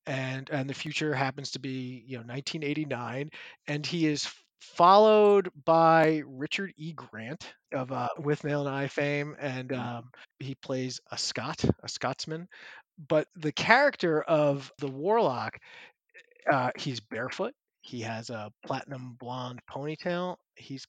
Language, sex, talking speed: English, male, 140 wpm